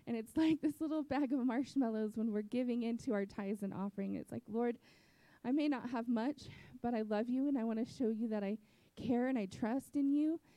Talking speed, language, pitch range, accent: 240 wpm, English, 190-225 Hz, American